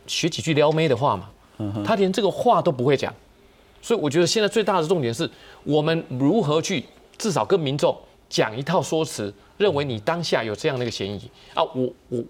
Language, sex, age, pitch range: Chinese, male, 30-49, 115-160 Hz